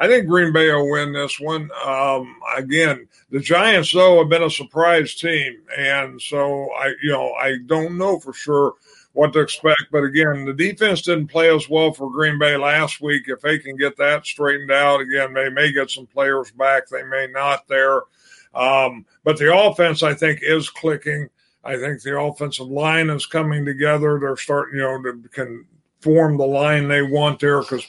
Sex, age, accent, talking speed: male, 50-69, American, 195 wpm